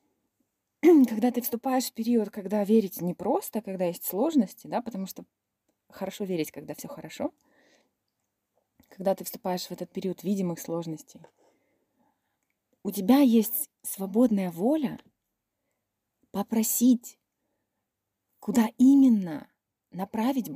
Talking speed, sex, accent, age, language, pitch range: 110 wpm, female, native, 20-39, Russian, 180-240 Hz